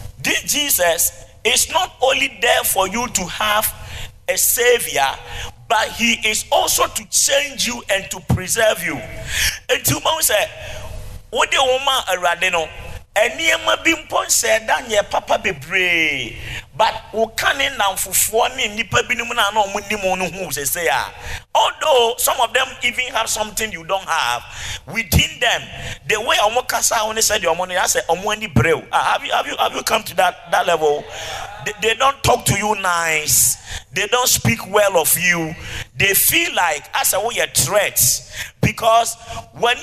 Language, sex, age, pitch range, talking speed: English, male, 50-69, 170-245 Hz, 160 wpm